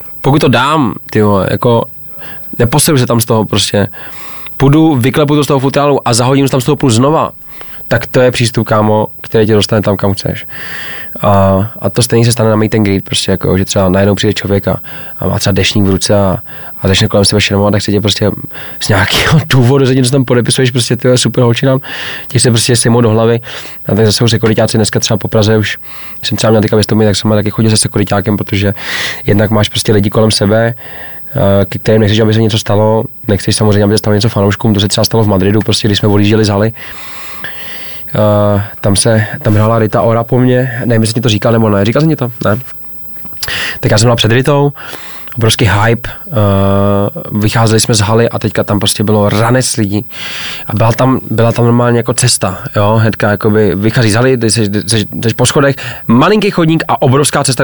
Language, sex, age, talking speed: Czech, male, 20-39, 205 wpm